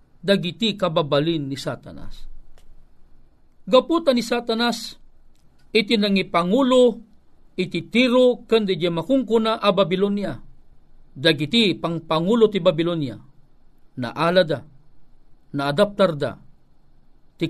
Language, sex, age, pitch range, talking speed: Filipino, male, 50-69, 185-260 Hz, 80 wpm